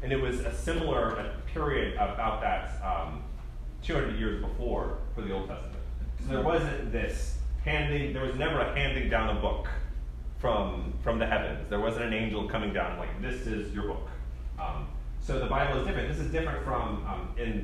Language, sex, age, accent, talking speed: English, male, 30-49, American, 190 wpm